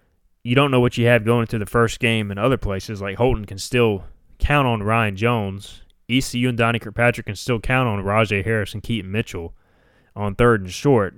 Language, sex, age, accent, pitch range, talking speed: English, male, 20-39, American, 100-120 Hz, 210 wpm